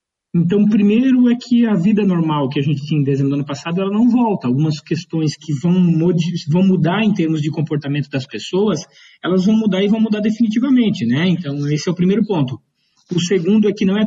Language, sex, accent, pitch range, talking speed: Portuguese, male, Brazilian, 155-200 Hz, 225 wpm